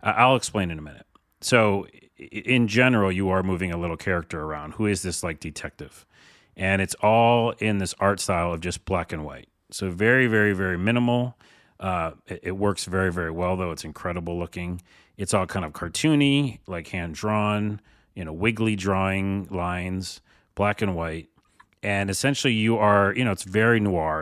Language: English